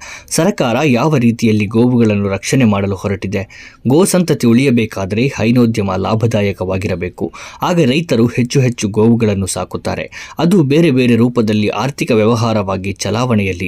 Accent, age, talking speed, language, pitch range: native, 20-39, 110 wpm, Kannada, 100-125 Hz